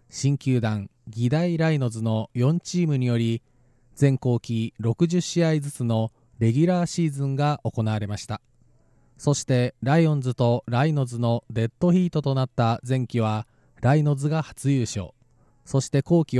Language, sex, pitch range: Japanese, male, 115-145 Hz